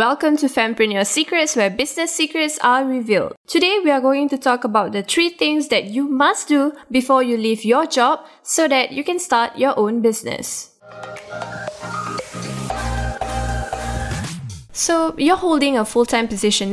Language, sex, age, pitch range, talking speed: English, female, 10-29, 210-280 Hz, 150 wpm